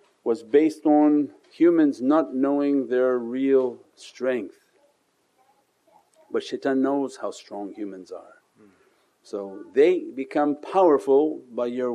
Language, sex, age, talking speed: English, male, 50-69, 110 wpm